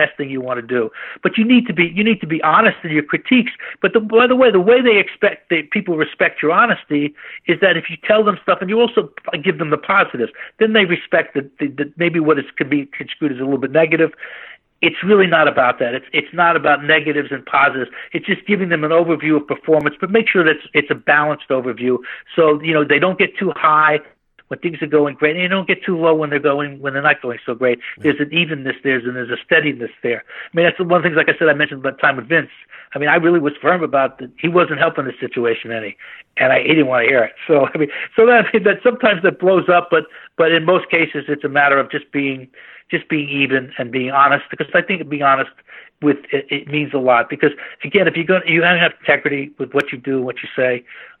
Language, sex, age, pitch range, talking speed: English, male, 60-79, 140-180 Hz, 260 wpm